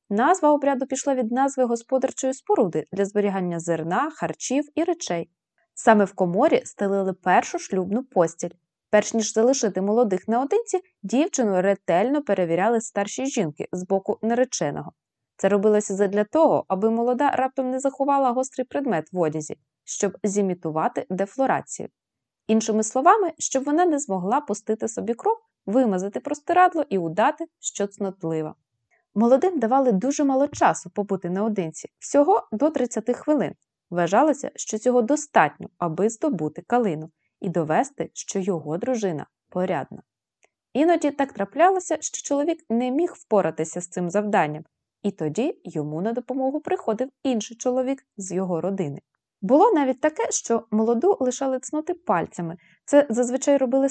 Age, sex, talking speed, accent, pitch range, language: 20-39, female, 135 wpm, native, 190-275 Hz, Ukrainian